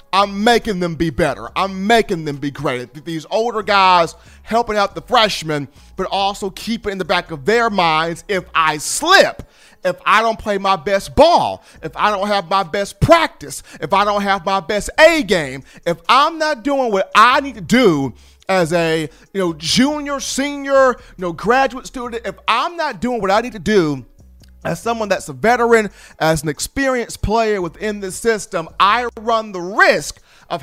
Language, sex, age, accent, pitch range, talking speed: English, male, 40-59, American, 165-220 Hz, 180 wpm